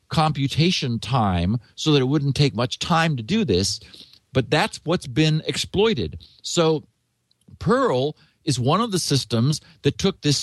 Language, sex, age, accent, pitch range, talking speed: English, male, 50-69, American, 125-175 Hz, 155 wpm